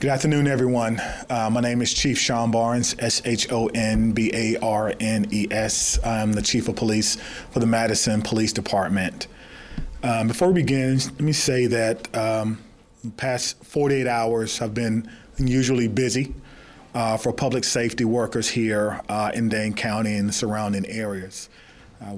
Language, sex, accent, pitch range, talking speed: English, male, American, 105-115 Hz, 170 wpm